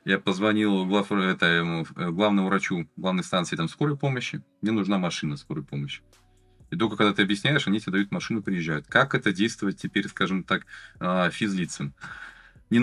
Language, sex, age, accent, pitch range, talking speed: Russian, male, 20-39, native, 95-115 Hz, 160 wpm